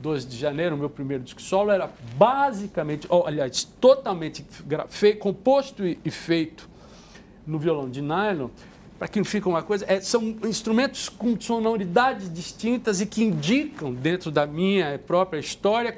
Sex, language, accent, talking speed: male, Portuguese, Brazilian, 155 wpm